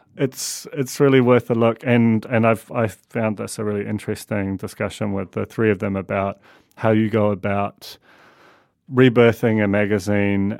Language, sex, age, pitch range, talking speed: English, male, 30-49, 105-120 Hz, 170 wpm